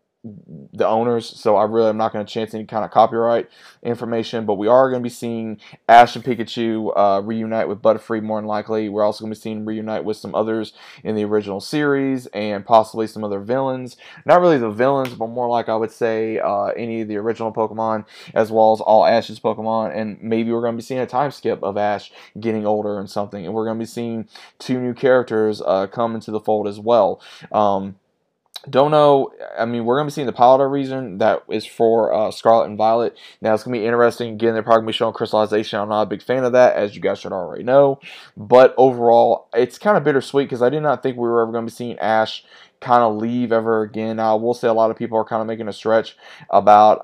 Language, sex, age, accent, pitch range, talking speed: English, male, 20-39, American, 110-120 Hz, 245 wpm